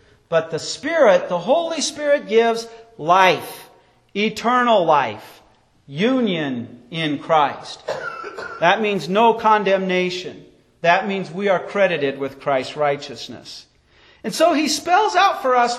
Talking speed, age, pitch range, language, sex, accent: 120 wpm, 40-59, 200-275 Hz, English, male, American